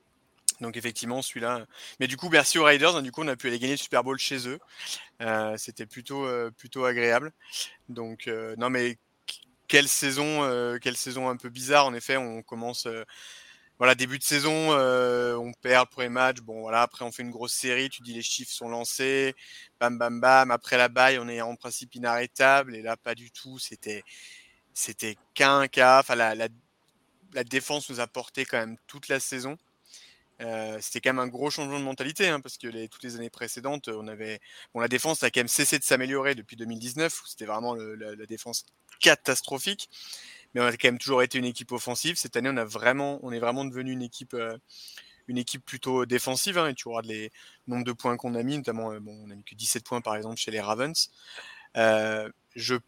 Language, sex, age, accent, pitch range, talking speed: French, male, 20-39, French, 115-135 Hz, 220 wpm